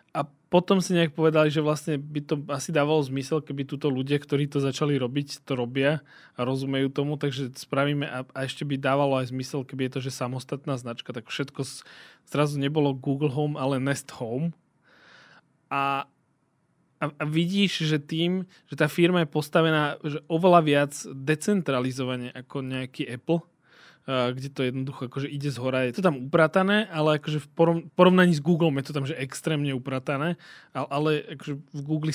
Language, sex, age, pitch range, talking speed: Slovak, male, 20-39, 135-165 Hz, 175 wpm